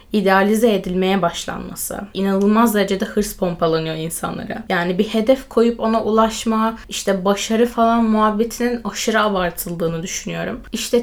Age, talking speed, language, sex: 10-29, 120 wpm, Turkish, female